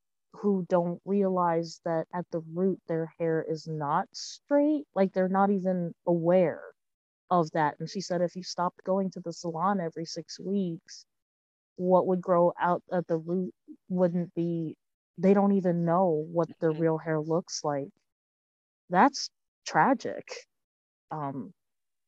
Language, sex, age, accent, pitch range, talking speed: English, female, 30-49, American, 165-195 Hz, 145 wpm